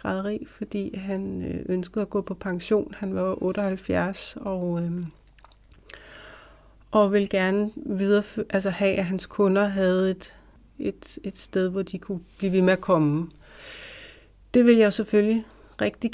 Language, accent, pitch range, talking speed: Danish, native, 185-205 Hz, 150 wpm